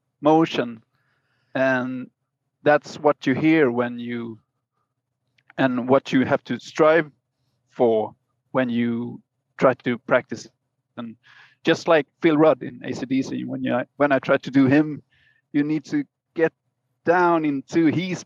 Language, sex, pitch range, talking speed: English, male, 125-150 Hz, 140 wpm